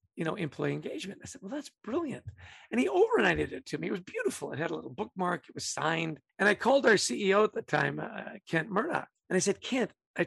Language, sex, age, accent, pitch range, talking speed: English, male, 50-69, American, 185-270 Hz, 245 wpm